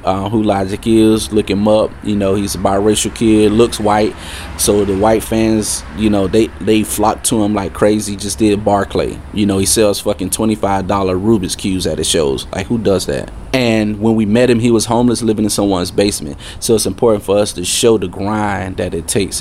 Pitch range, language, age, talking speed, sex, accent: 95-110 Hz, English, 30-49, 215 wpm, male, American